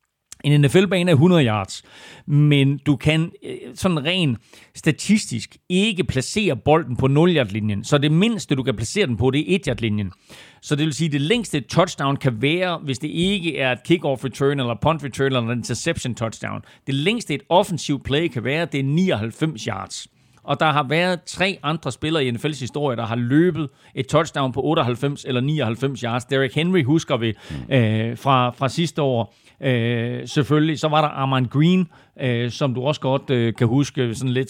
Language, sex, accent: Danish, male, native